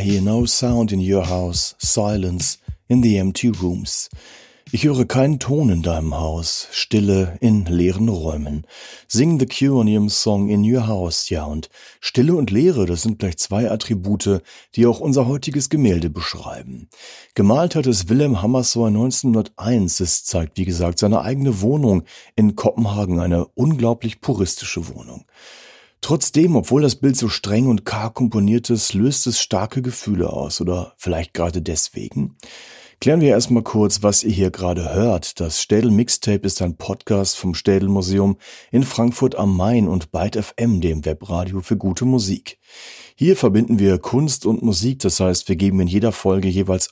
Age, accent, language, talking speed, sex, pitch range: 40-59, German, German, 165 wpm, male, 90-120 Hz